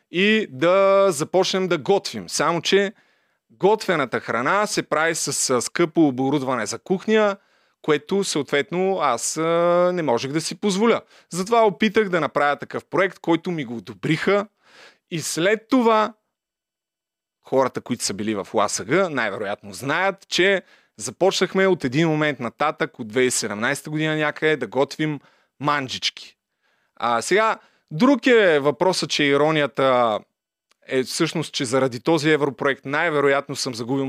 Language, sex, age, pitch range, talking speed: Bulgarian, male, 30-49, 135-190 Hz, 130 wpm